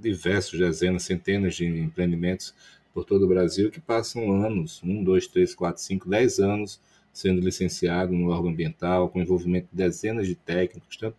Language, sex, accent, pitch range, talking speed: Portuguese, male, Brazilian, 90-110 Hz, 165 wpm